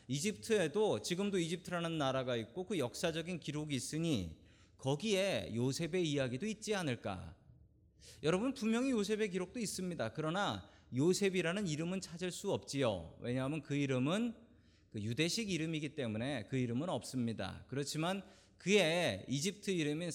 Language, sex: Korean, male